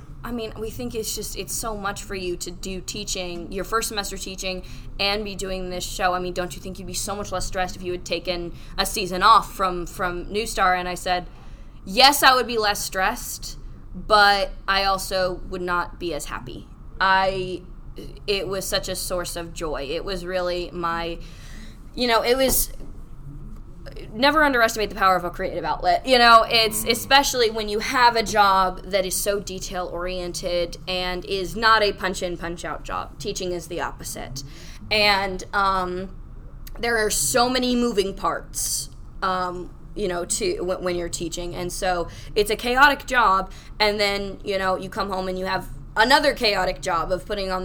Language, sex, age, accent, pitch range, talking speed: English, female, 20-39, American, 180-210 Hz, 185 wpm